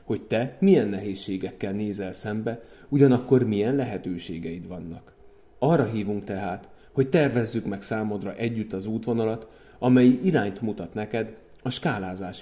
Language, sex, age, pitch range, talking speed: Hungarian, male, 30-49, 100-125 Hz, 125 wpm